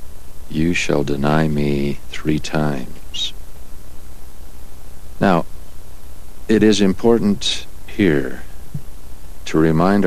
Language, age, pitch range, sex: English, 60-79, 70-90 Hz, male